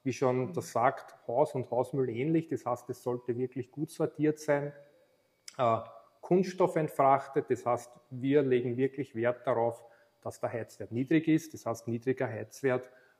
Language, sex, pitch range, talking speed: German, male, 120-155 Hz, 150 wpm